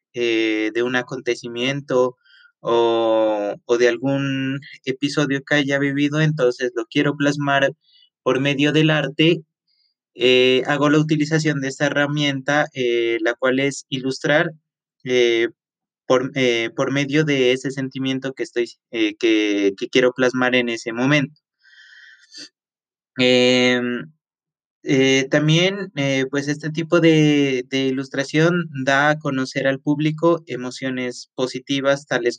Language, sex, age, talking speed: English, male, 20-39, 120 wpm